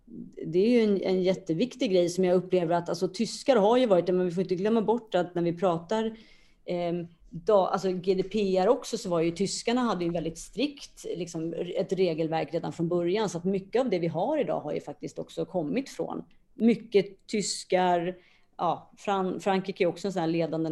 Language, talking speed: Swedish, 175 wpm